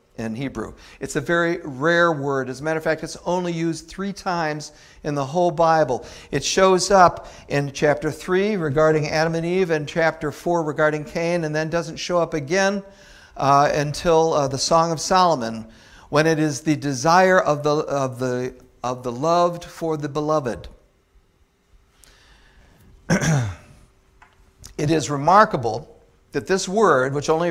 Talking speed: 155 wpm